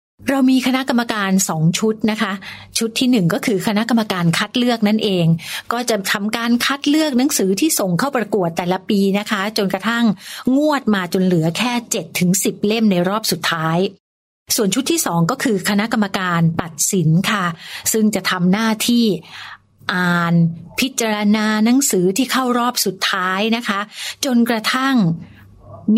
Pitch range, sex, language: 175-230 Hz, female, Thai